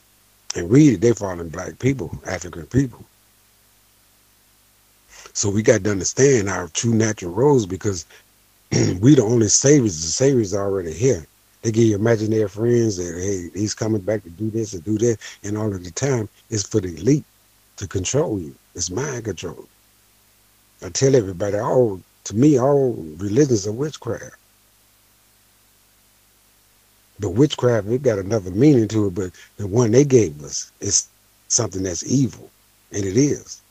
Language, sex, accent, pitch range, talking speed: English, male, American, 100-120 Hz, 160 wpm